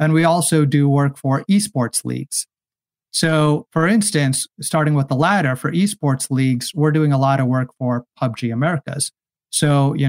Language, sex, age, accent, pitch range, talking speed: English, male, 30-49, American, 125-150 Hz, 170 wpm